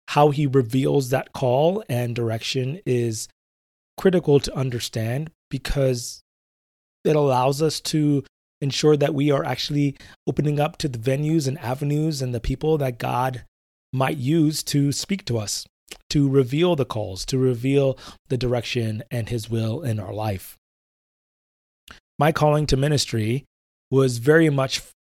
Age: 30-49